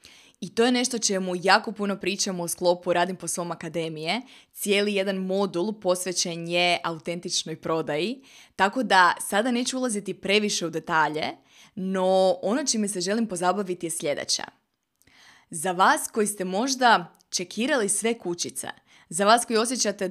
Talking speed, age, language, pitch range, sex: 145 wpm, 20-39, Croatian, 175-225 Hz, female